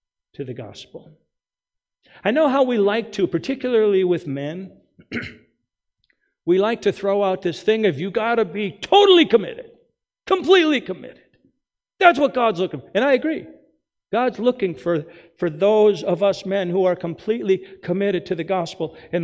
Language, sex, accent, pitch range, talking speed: English, male, American, 150-225 Hz, 160 wpm